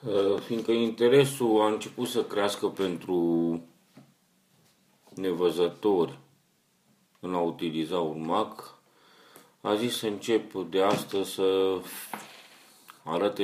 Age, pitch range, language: 40-59, 85-105 Hz, Romanian